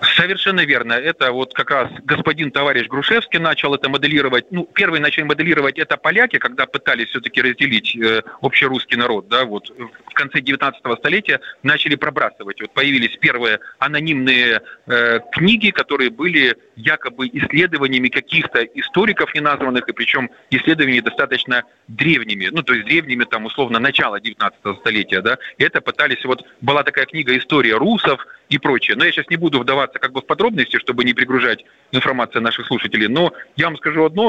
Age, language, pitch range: 30-49, Russian, 130-165 Hz